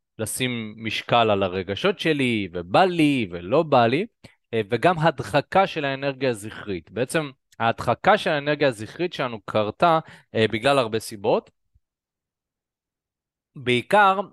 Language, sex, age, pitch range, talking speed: Hebrew, male, 20-39, 110-140 Hz, 110 wpm